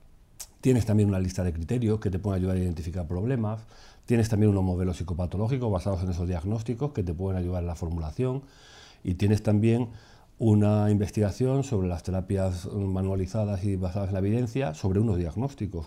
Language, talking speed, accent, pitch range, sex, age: Spanish, 175 wpm, Spanish, 90-110 Hz, male, 40-59